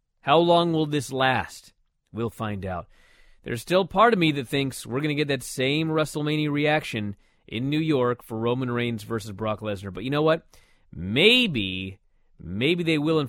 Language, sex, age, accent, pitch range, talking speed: English, male, 30-49, American, 105-145 Hz, 185 wpm